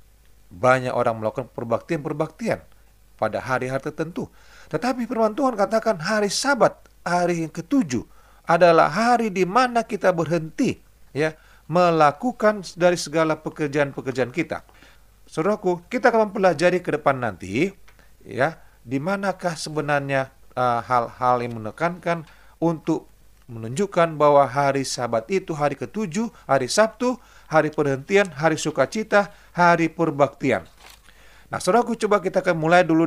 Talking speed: 120 wpm